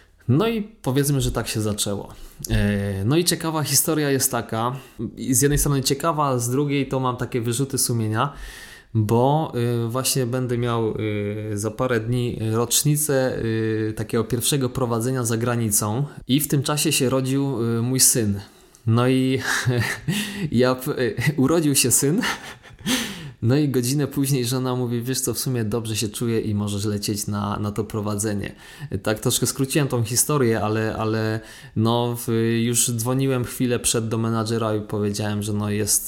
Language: Polish